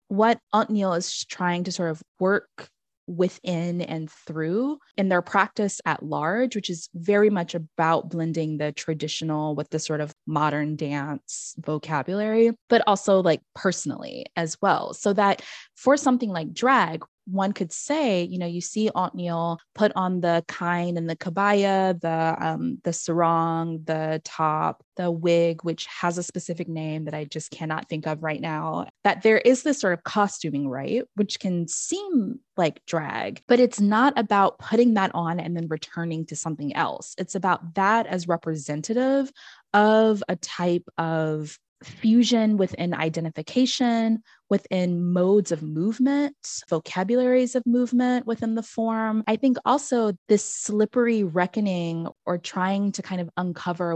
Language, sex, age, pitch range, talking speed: English, female, 20-39, 165-215 Hz, 155 wpm